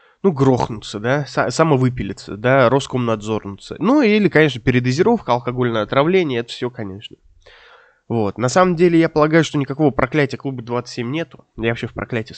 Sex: male